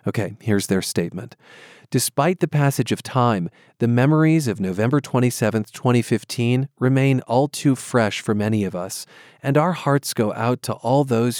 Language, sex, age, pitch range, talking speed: English, male, 40-59, 105-135 Hz, 165 wpm